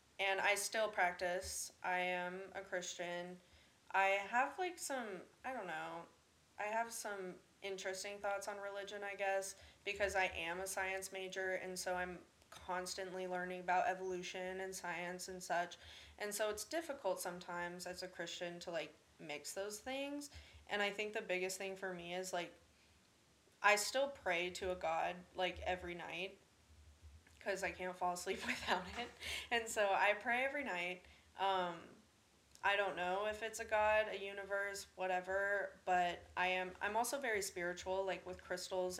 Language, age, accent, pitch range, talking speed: English, 20-39, American, 180-205 Hz, 165 wpm